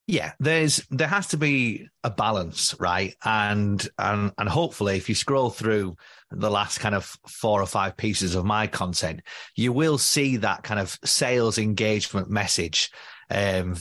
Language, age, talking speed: English, 30-49, 165 wpm